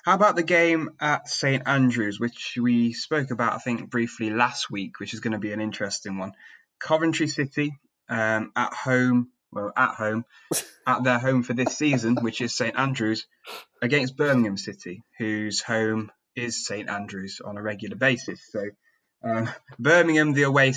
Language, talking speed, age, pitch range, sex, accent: English, 170 wpm, 20-39, 110-135 Hz, male, British